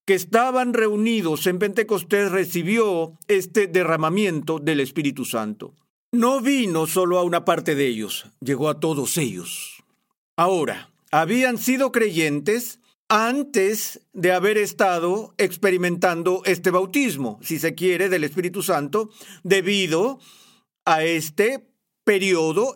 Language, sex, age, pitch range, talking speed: Spanish, male, 50-69, 175-225 Hz, 115 wpm